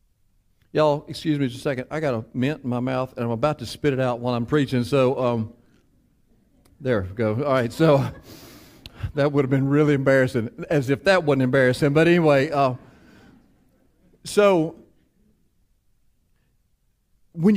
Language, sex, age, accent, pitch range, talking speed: English, male, 40-59, American, 130-195 Hz, 160 wpm